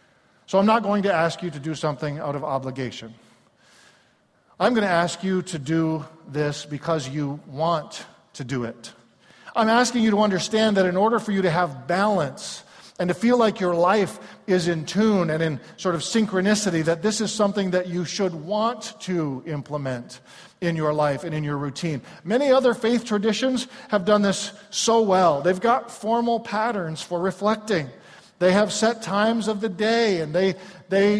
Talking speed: 185 wpm